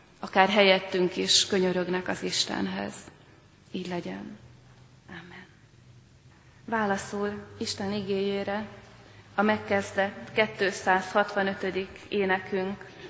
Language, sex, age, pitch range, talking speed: Hungarian, female, 30-49, 185-205 Hz, 75 wpm